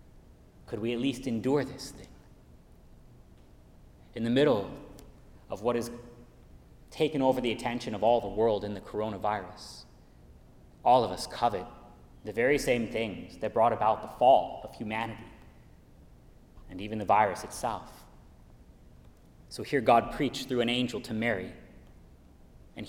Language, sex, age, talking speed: English, male, 30-49, 140 wpm